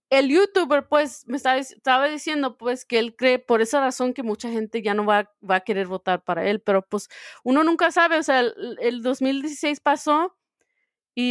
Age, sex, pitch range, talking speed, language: 30-49, female, 210-270 Hz, 200 wpm, Spanish